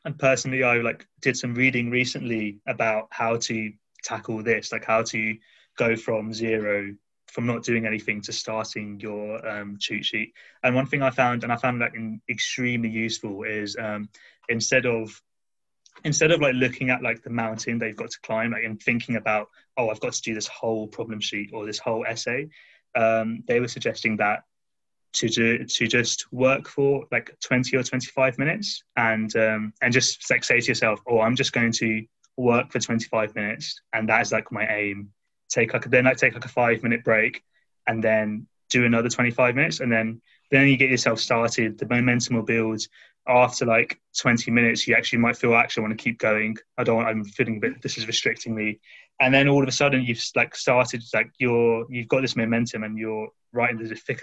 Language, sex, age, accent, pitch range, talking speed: English, male, 20-39, British, 110-125 Hz, 210 wpm